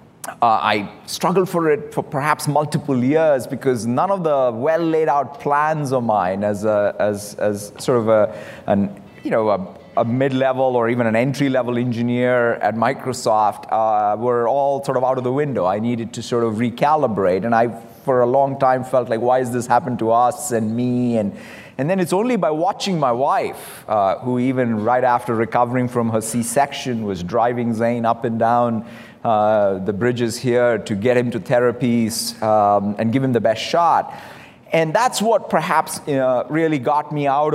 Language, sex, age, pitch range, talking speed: English, male, 30-49, 115-140 Hz, 185 wpm